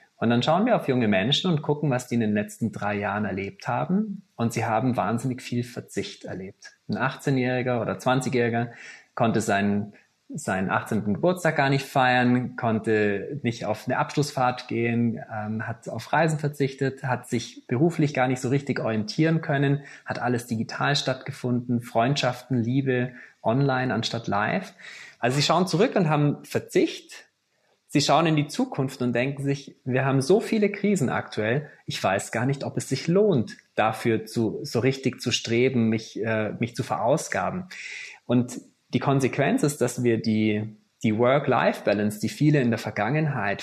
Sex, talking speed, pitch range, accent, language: male, 165 wpm, 115-145 Hz, German, German